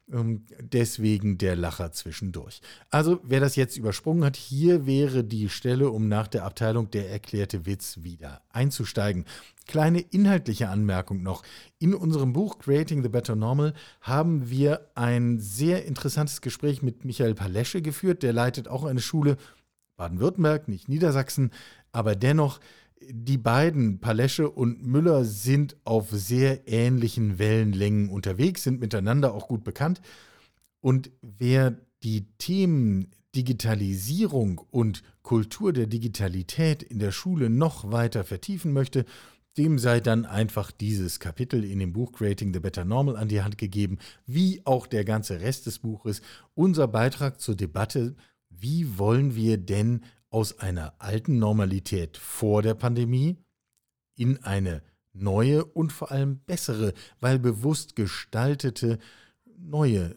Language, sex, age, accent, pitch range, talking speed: German, male, 40-59, German, 105-140 Hz, 135 wpm